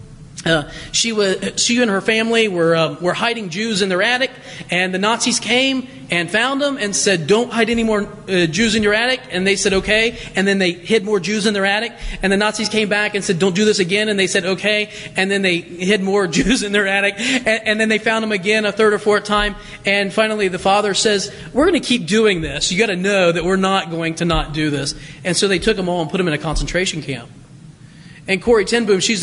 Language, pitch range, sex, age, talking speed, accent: English, 165-225 Hz, male, 30-49, 255 wpm, American